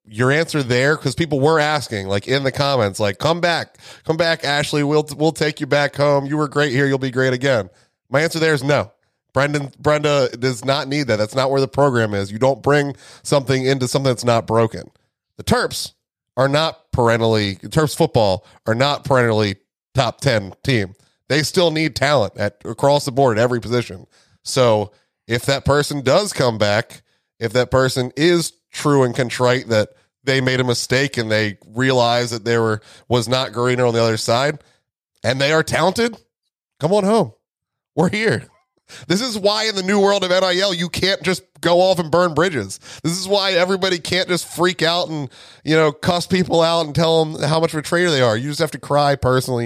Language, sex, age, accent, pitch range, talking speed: English, male, 30-49, American, 120-155 Hz, 205 wpm